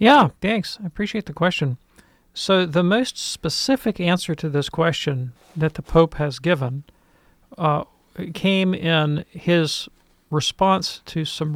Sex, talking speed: male, 135 wpm